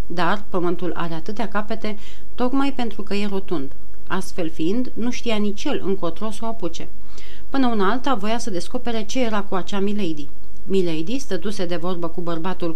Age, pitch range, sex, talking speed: 40-59, 175-230 Hz, female, 175 wpm